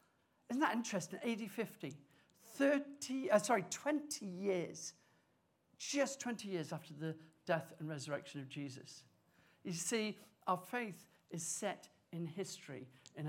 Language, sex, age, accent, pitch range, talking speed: English, male, 50-69, British, 180-235 Hz, 125 wpm